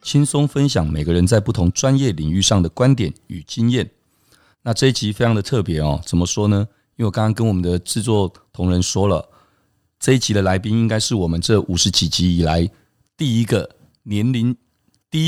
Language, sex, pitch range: Chinese, male, 90-115 Hz